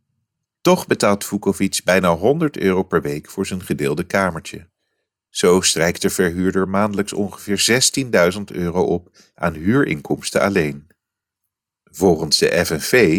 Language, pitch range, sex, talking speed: English, 85-115 Hz, male, 125 wpm